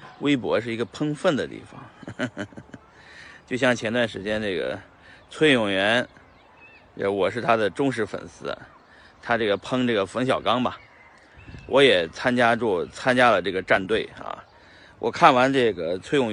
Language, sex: Chinese, male